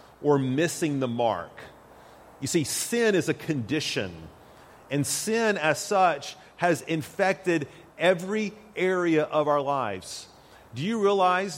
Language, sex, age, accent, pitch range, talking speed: English, male, 40-59, American, 130-170 Hz, 125 wpm